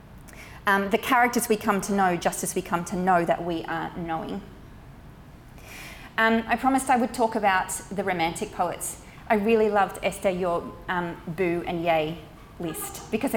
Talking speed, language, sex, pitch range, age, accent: 170 wpm, English, female, 170-215 Hz, 30-49, Australian